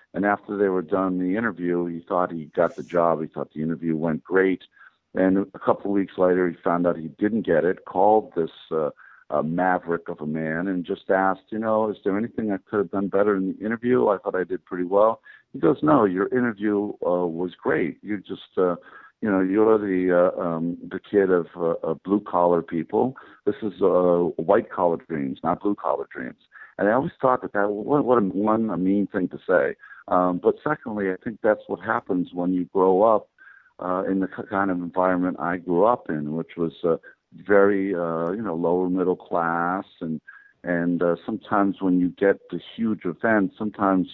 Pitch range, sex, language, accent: 85-100 Hz, male, English, American